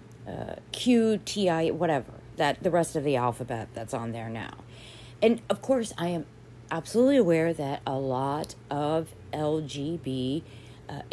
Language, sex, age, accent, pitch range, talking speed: English, female, 40-59, American, 125-185 Hz, 160 wpm